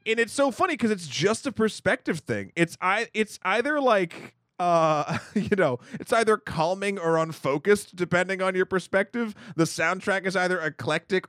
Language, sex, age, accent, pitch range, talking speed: English, male, 30-49, American, 135-190 Hz, 170 wpm